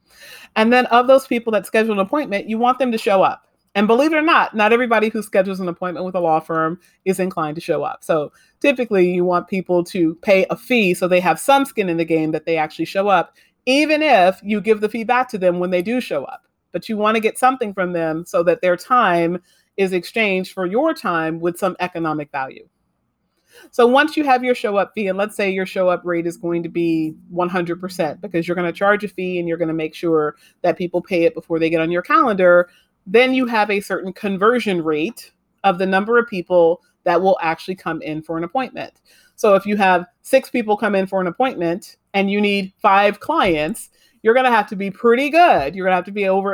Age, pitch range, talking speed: 40-59, 175-220 Hz, 240 wpm